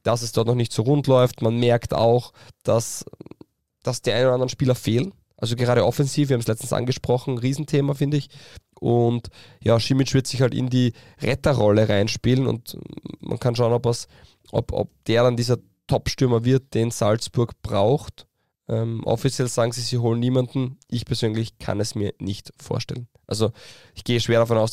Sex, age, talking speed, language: male, 20-39, 185 wpm, German